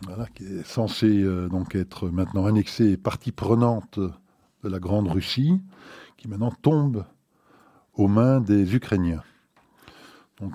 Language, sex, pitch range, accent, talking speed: French, male, 95-110 Hz, French, 125 wpm